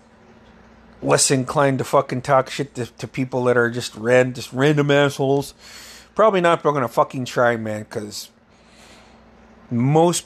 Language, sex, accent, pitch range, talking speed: English, male, American, 115-145 Hz, 150 wpm